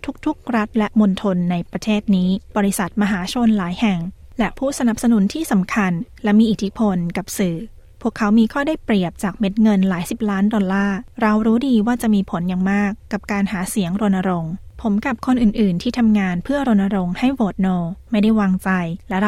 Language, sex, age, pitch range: Thai, female, 20-39, 190-225 Hz